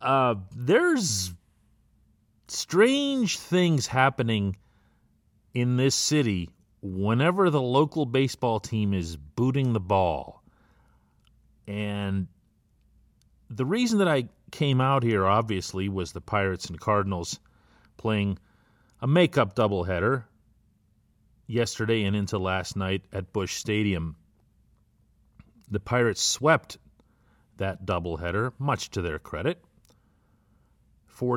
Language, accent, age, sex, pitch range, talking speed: English, American, 40-59, male, 90-115 Hz, 100 wpm